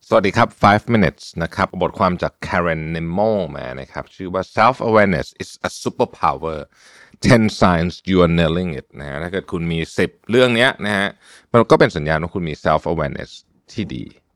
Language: Thai